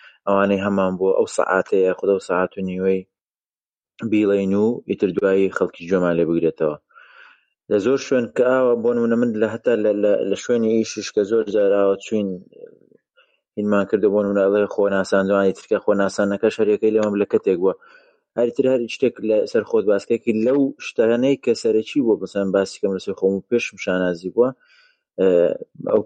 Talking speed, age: 135 wpm, 30-49